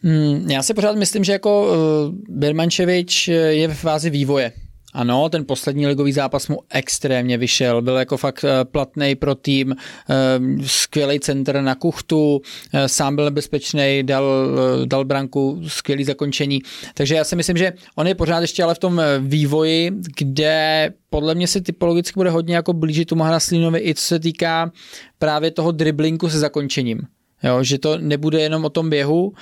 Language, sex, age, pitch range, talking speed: Czech, male, 20-39, 135-160 Hz, 160 wpm